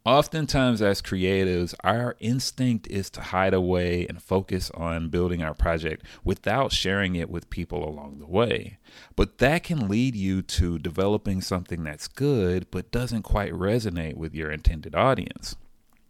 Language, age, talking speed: English, 30-49, 155 wpm